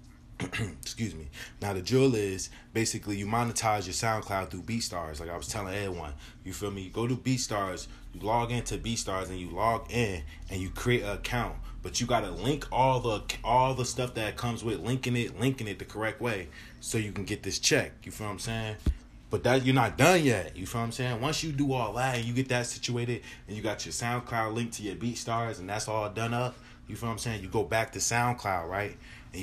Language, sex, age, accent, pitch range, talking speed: English, male, 20-39, American, 95-120 Hz, 235 wpm